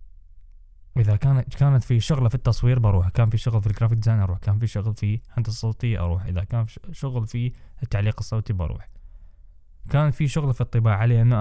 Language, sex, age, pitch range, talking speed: Arabic, male, 10-29, 85-135 Hz, 200 wpm